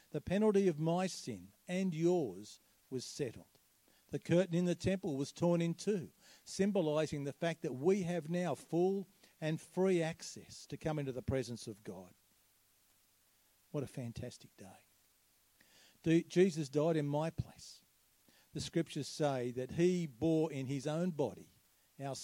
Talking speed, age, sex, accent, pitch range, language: 150 wpm, 50-69, male, Australian, 130-175 Hz, English